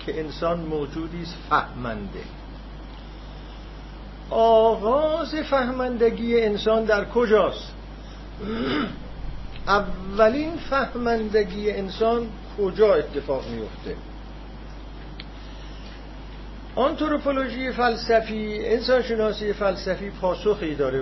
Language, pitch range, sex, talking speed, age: Persian, 140-215 Hz, male, 60 wpm, 50-69